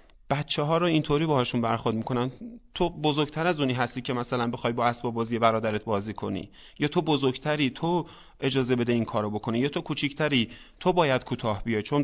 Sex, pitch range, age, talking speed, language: male, 115-160 Hz, 30-49, 190 wpm, Persian